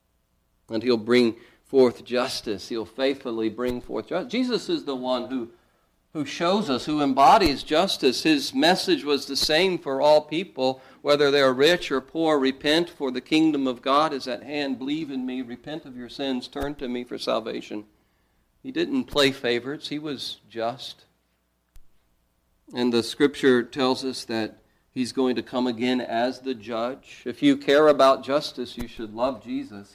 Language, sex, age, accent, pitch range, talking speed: English, male, 50-69, American, 115-145 Hz, 170 wpm